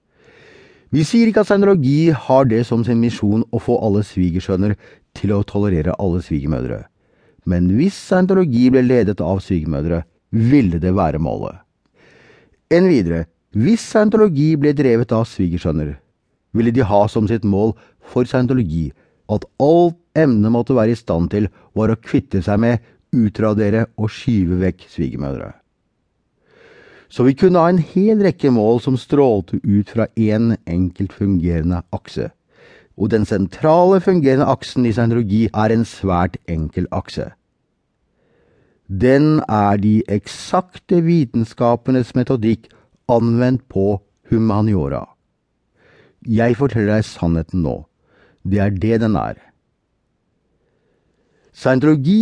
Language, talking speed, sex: English, 125 wpm, male